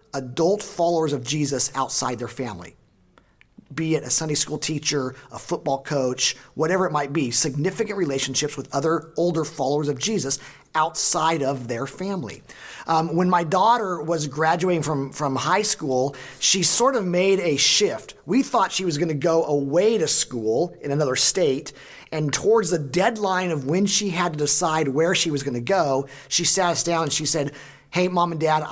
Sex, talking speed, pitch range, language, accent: male, 185 wpm, 135-175 Hz, English, American